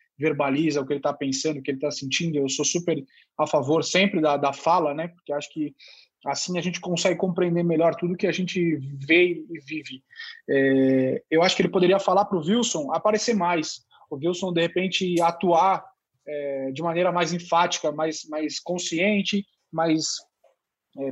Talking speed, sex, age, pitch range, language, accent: 180 wpm, male, 20-39, 150-180 Hz, Portuguese, Brazilian